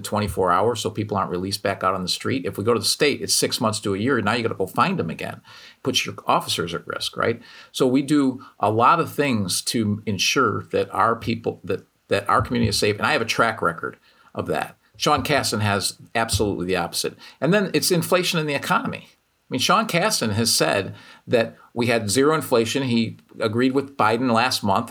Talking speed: 225 wpm